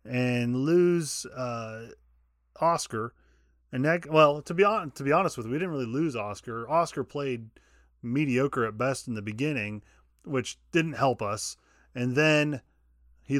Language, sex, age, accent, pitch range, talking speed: English, male, 30-49, American, 105-140 Hz, 155 wpm